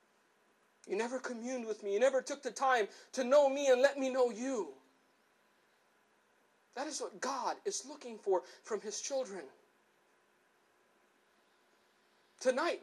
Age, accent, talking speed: 50-69, American, 135 wpm